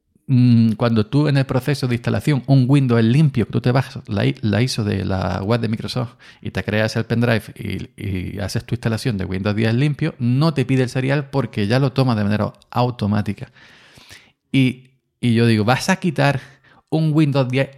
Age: 40-59